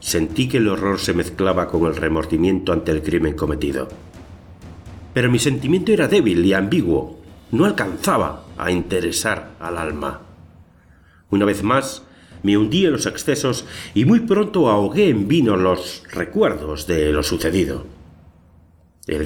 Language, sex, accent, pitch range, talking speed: English, male, Spanish, 85-120 Hz, 145 wpm